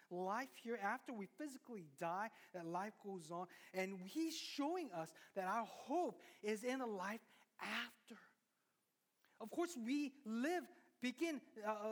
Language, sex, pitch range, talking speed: English, male, 180-235 Hz, 140 wpm